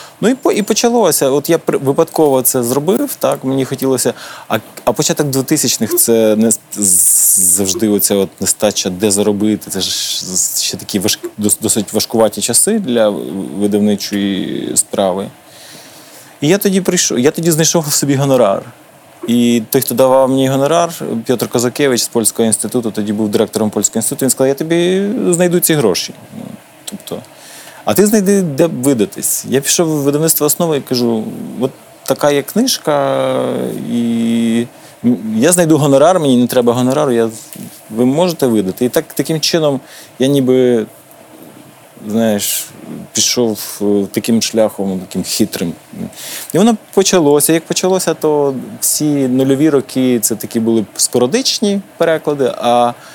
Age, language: 20-39, Ukrainian